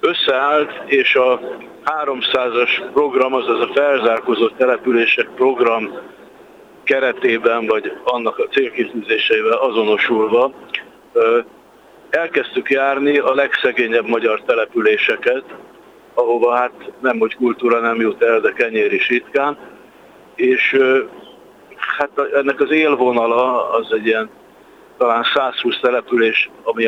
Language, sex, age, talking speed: Hungarian, male, 60-79, 95 wpm